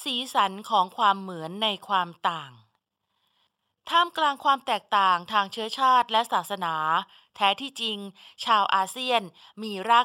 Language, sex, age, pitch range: Thai, female, 20-39, 185-245 Hz